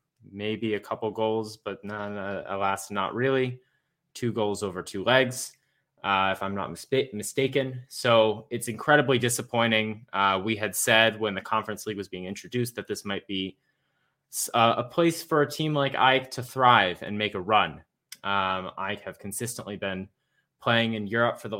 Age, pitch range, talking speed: 20-39, 105-130 Hz, 170 wpm